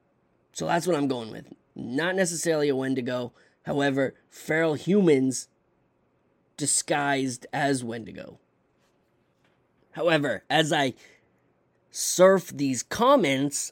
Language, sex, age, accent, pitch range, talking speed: English, male, 20-39, American, 135-190 Hz, 95 wpm